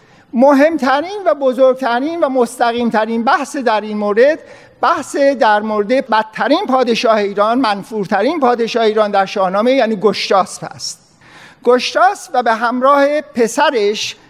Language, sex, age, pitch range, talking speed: Persian, male, 50-69, 210-275 Hz, 120 wpm